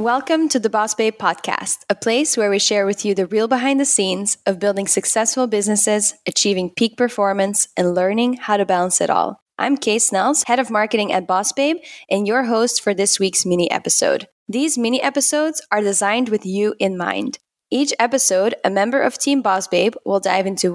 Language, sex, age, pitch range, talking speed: English, female, 10-29, 200-255 Hz, 200 wpm